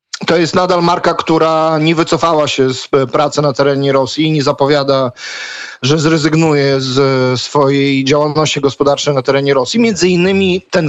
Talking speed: 155 wpm